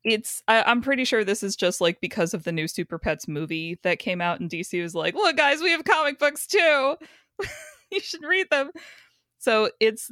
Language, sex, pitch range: English, female, 160-220 Hz